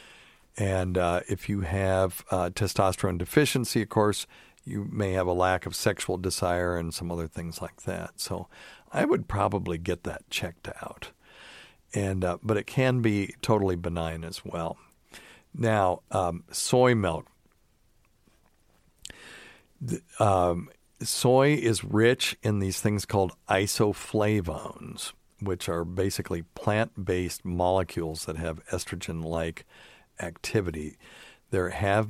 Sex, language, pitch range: male, English, 90-105 Hz